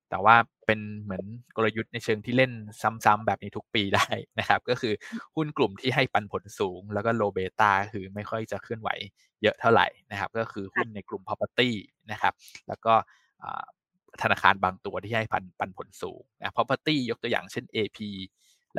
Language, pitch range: Thai, 95-115 Hz